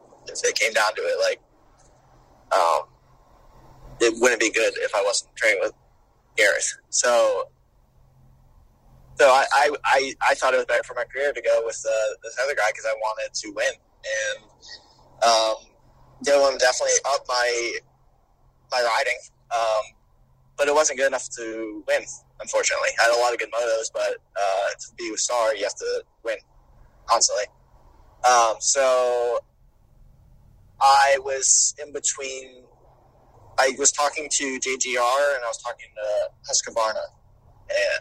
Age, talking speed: 20-39, 150 wpm